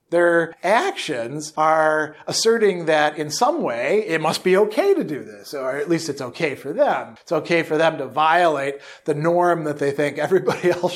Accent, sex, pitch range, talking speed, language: American, male, 150-185 Hz, 190 wpm, English